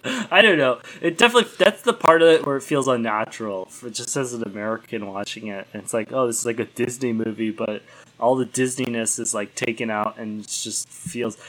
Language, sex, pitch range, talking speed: English, male, 110-135 Hz, 215 wpm